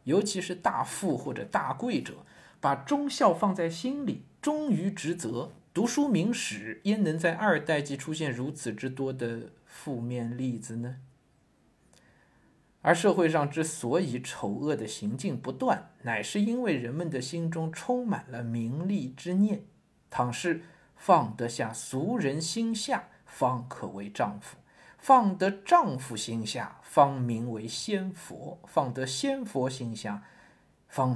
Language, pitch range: Chinese, 120-180 Hz